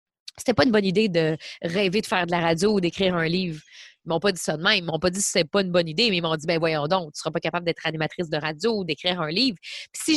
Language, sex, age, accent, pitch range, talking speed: French, female, 20-39, Canadian, 175-225 Hz, 320 wpm